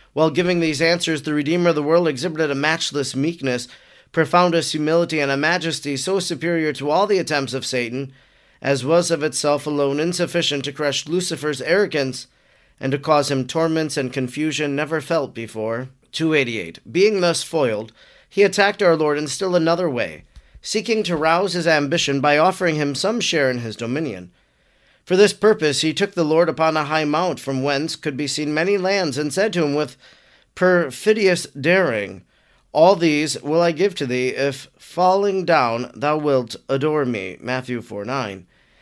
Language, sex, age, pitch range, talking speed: English, male, 40-59, 140-170 Hz, 175 wpm